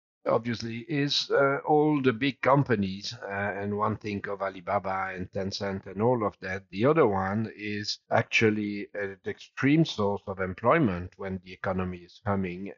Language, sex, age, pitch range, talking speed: English, male, 50-69, 95-110 Hz, 160 wpm